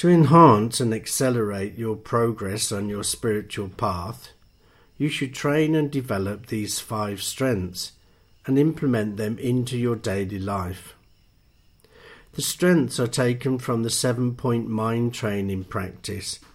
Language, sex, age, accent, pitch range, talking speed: English, male, 50-69, British, 100-130 Hz, 130 wpm